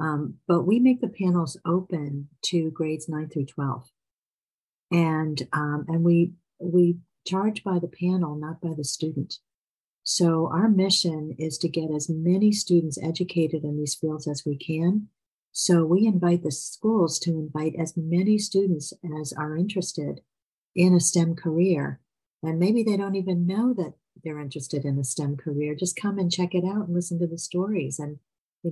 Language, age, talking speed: English, 50-69, 175 wpm